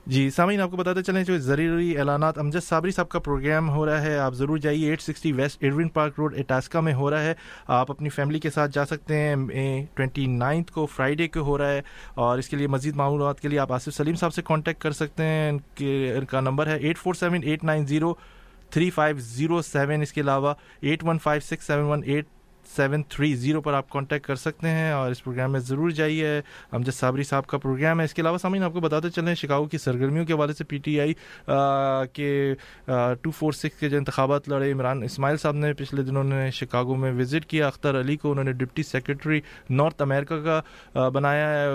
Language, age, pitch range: English, 20-39, 135-155 Hz